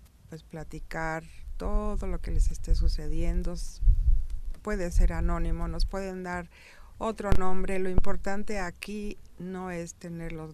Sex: female